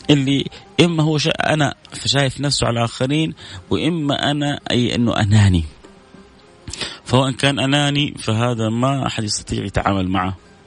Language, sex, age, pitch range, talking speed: Arabic, male, 30-49, 110-135 Hz, 135 wpm